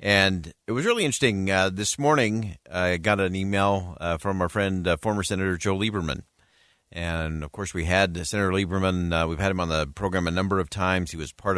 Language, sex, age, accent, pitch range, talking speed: English, male, 50-69, American, 85-100 Hz, 225 wpm